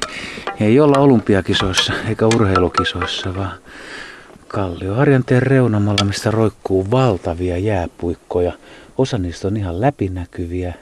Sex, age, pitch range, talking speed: male, 60-79, 85-110 Hz, 95 wpm